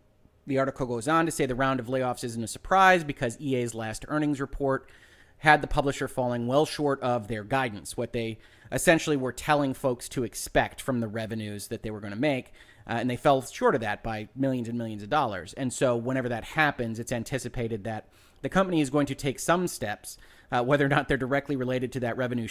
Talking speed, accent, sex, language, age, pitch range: 220 wpm, American, male, English, 30-49, 110-140 Hz